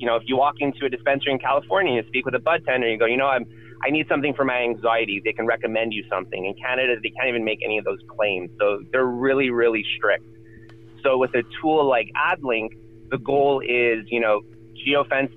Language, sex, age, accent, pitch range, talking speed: English, male, 30-49, American, 110-125 Hz, 230 wpm